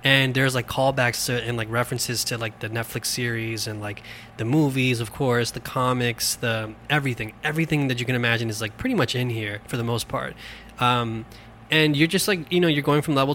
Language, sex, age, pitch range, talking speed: English, male, 20-39, 115-135 Hz, 220 wpm